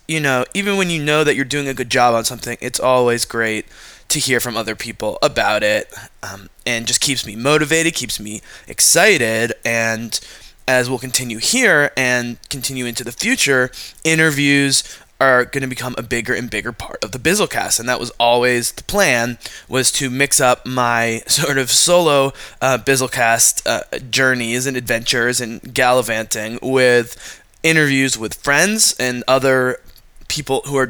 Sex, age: male, 20-39